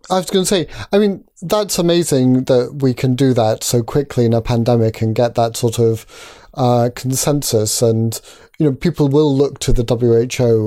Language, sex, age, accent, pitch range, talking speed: English, male, 30-49, British, 110-130 Hz, 195 wpm